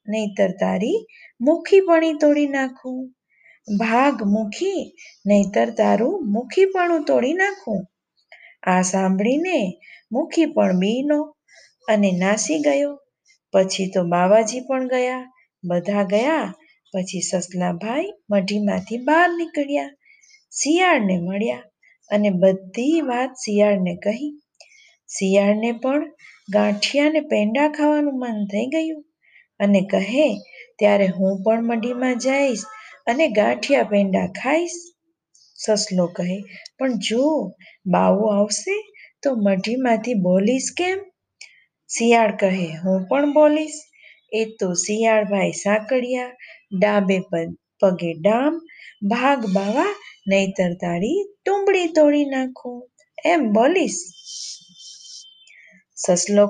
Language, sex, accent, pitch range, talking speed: Gujarati, female, native, 200-300 Hz, 50 wpm